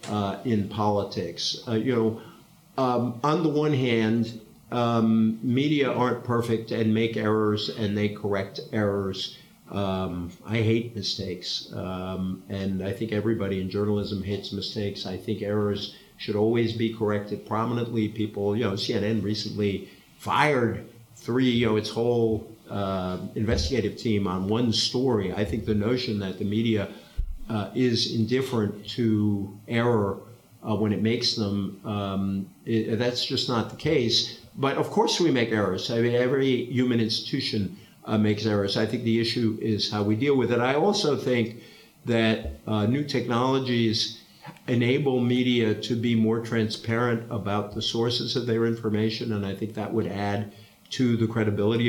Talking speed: 155 wpm